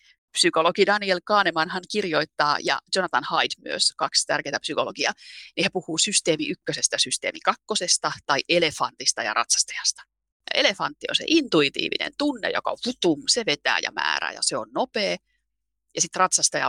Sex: female